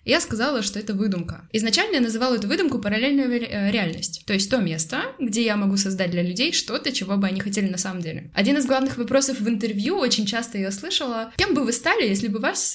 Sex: female